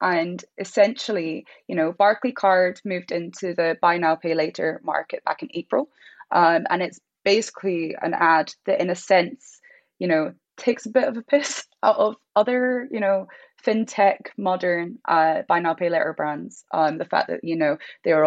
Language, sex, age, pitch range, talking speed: English, female, 20-39, 165-215 Hz, 180 wpm